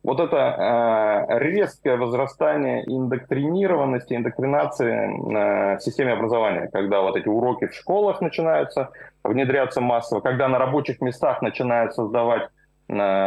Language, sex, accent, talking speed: Russian, male, native, 110 wpm